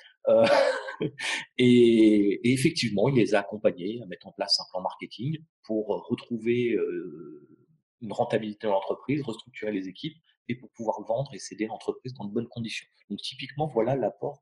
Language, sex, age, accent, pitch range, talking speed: French, male, 40-59, French, 105-135 Hz, 170 wpm